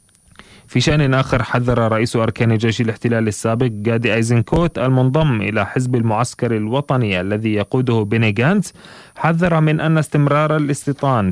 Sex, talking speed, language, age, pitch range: male, 135 wpm, Arabic, 30-49, 105-125 Hz